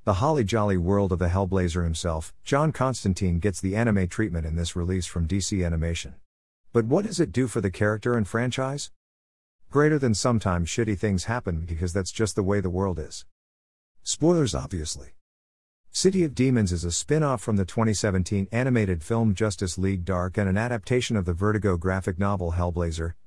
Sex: male